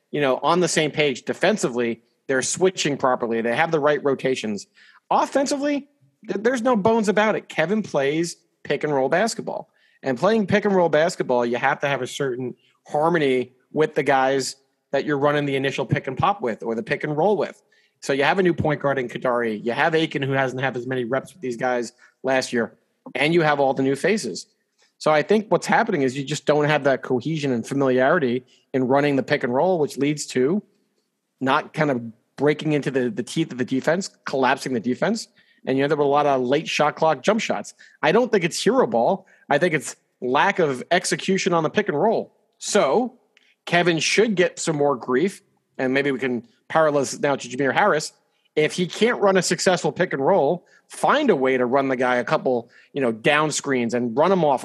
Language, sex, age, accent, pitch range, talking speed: English, male, 40-59, American, 130-180 Hz, 220 wpm